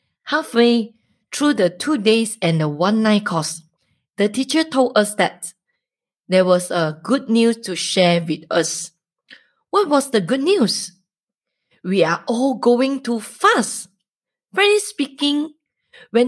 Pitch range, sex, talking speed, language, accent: 185-265 Hz, female, 135 wpm, English, Malaysian